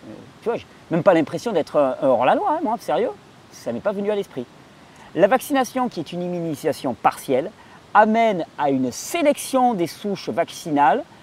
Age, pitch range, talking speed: 40-59, 155-225 Hz, 185 wpm